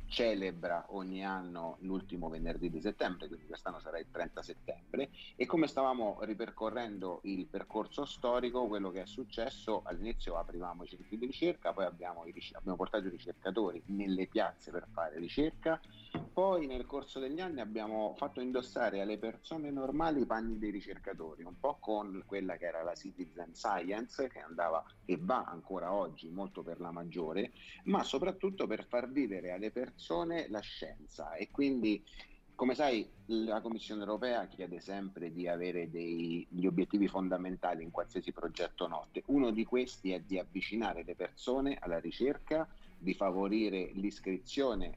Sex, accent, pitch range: male, native, 90-120 Hz